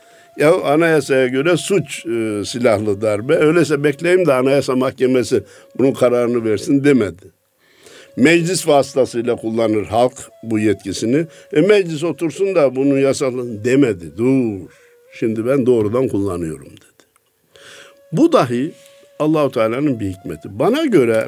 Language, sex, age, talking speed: Turkish, male, 60-79, 120 wpm